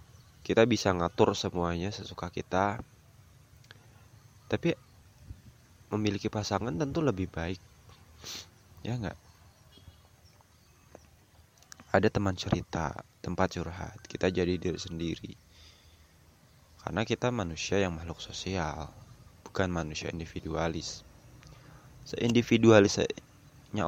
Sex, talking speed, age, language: male, 85 wpm, 20-39, Indonesian